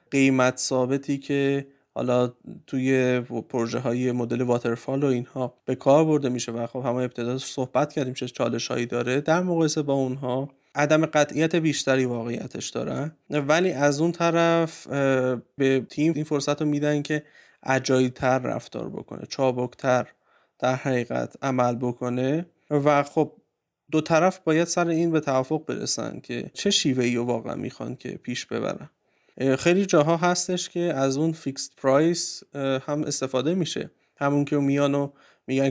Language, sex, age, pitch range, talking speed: Persian, male, 30-49, 130-155 Hz, 145 wpm